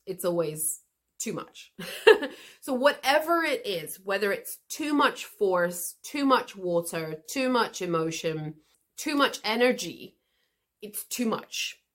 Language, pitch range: English, 175-255 Hz